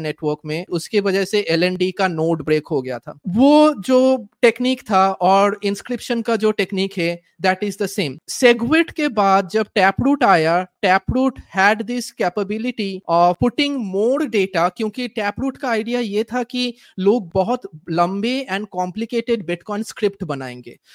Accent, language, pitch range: Indian, English, 185-245 Hz